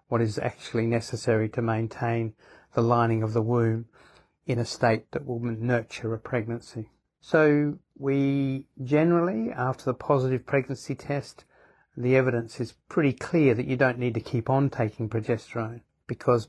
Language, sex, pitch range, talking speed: English, male, 115-135 Hz, 155 wpm